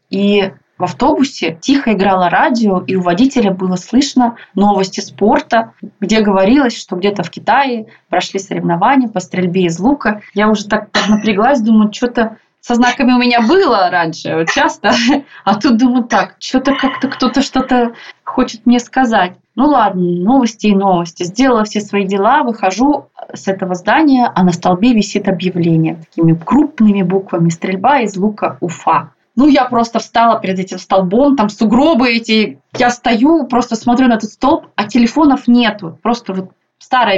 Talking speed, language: 155 wpm, Russian